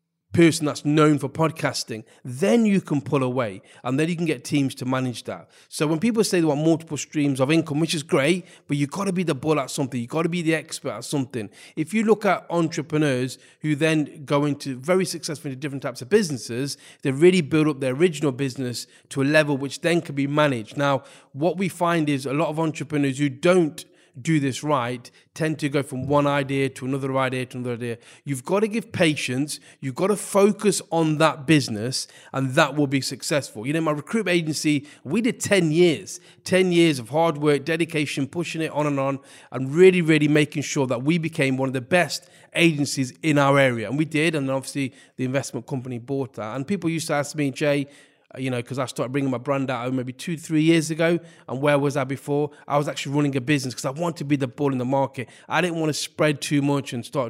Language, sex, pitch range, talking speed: English, male, 135-165 Hz, 230 wpm